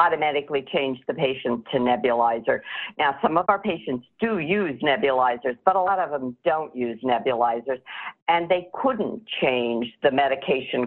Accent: American